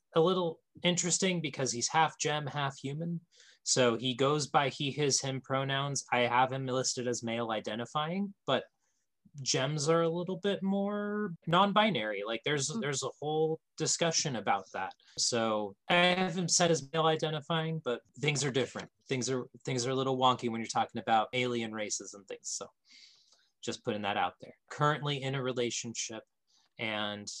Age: 20-39